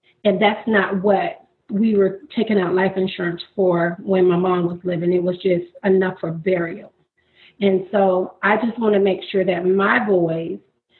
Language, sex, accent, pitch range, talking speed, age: English, female, American, 180-205 Hz, 180 wpm, 30-49